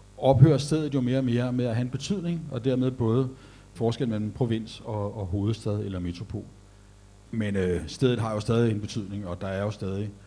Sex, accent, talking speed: male, native, 205 wpm